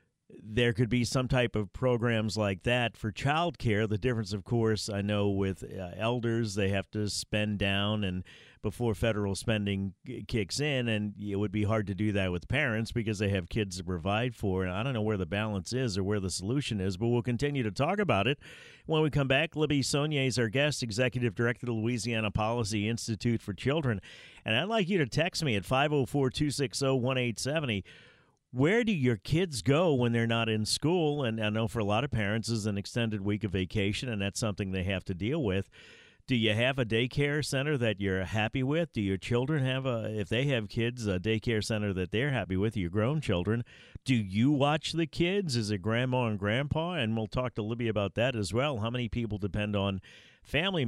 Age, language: 50-69, English